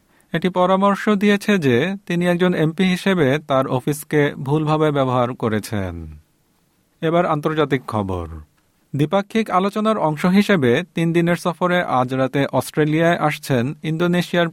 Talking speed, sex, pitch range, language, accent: 85 wpm, male, 125-175 Hz, Bengali, native